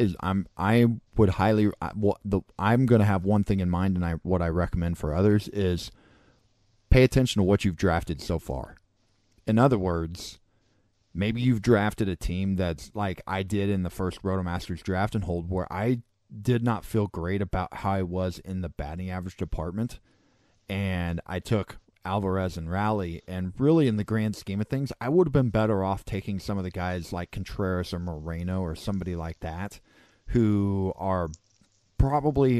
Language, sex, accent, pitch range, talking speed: English, male, American, 90-105 Hz, 190 wpm